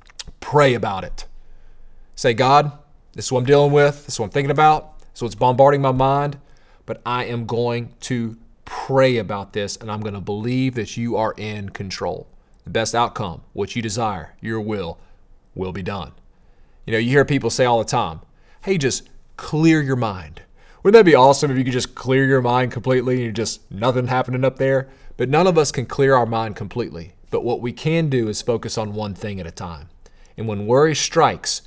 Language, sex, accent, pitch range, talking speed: English, male, American, 105-130 Hz, 210 wpm